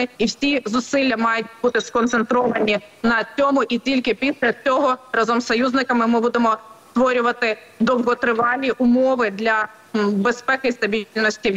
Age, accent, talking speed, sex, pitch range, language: 20-39, native, 130 wpm, female, 195-240 Hz, Ukrainian